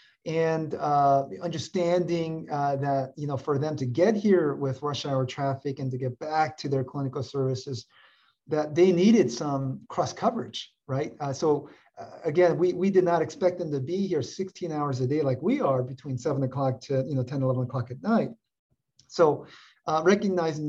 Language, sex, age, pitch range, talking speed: English, male, 40-59, 130-160 Hz, 190 wpm